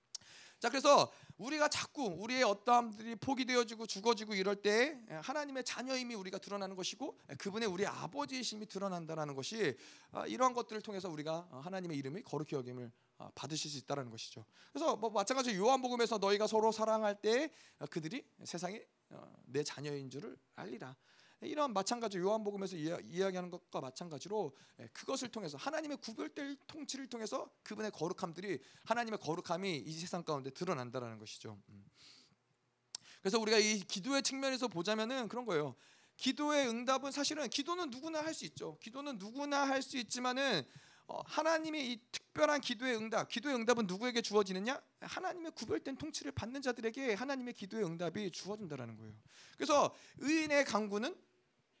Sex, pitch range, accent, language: male, 180-260 Hz, native, Korean